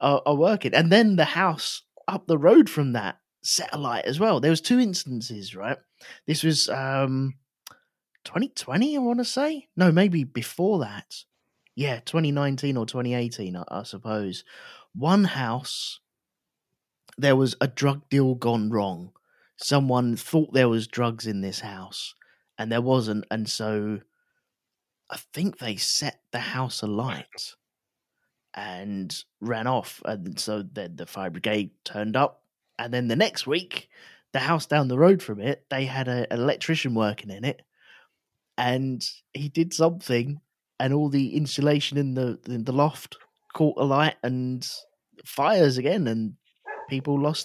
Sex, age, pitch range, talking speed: male, 20-39, 115-150 Hz, 150 wpm